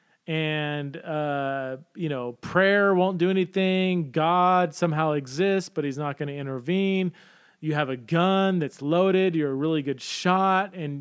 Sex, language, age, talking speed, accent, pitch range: male, English, 30-49, 160 wpm, American, 145-190 Hz